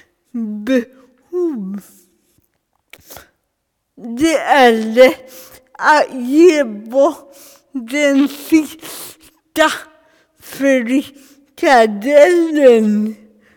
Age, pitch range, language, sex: 50-69, 240-320 Hz, Swedish, female